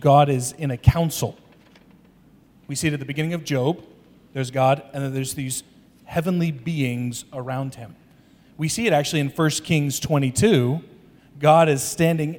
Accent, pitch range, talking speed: American, 130-160 Hz, 165 wpm